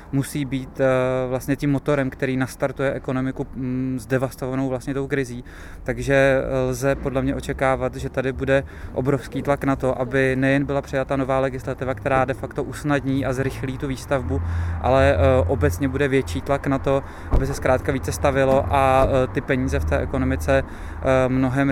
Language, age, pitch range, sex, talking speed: Czech, 20-39, 130-135 Hz, male, 155 wpm